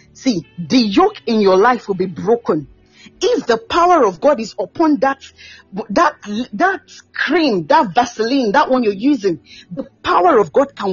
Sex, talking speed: female, 170 wpm